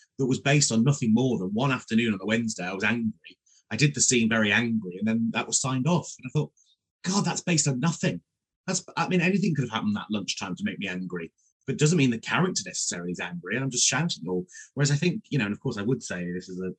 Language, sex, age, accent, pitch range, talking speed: English, male, 30-49, British, 105-145 Hz, 270 wpm